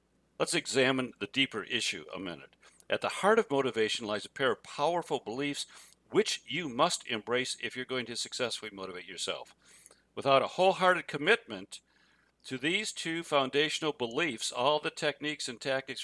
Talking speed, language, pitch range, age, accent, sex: 160 wpm, English, 120-155 Hz, 60-79, American, male